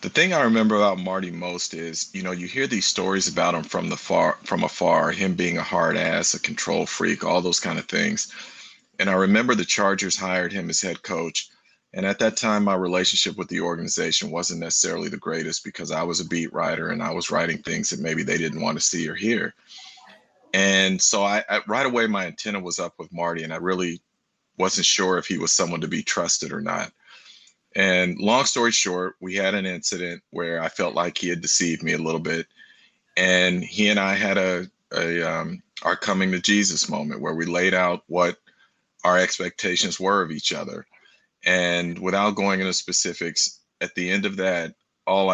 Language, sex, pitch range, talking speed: English, male, 85-100 Hz, 210 wpm